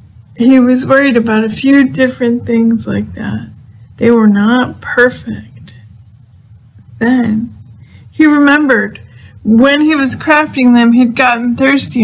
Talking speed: 125 wpm